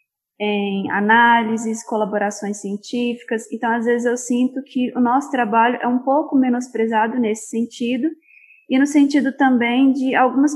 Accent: Brazilian